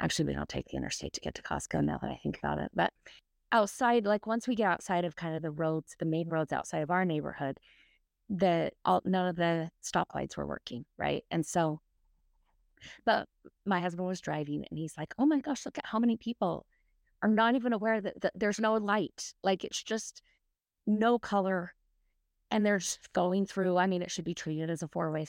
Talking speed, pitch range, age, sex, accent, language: 205 wpm, 165-230 Hz, 20-39, female, American, English